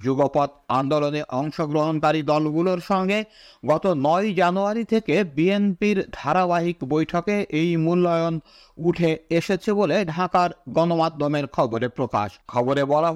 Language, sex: Bengali, male